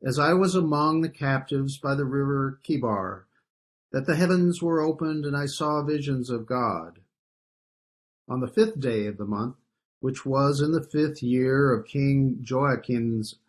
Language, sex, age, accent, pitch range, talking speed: English, male, 50-69, American, 115-155 Hz, 165 wpm